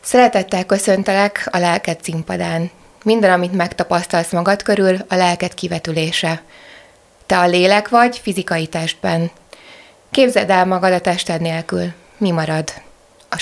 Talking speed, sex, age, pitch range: 125 wpm, female, 20-39, 170-205 Hz